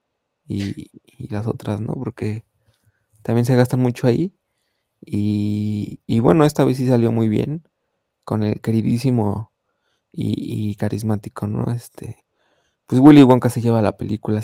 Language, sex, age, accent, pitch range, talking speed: Spanish, male, 20-39, Mexican, 110-130 Hz, 145 wpm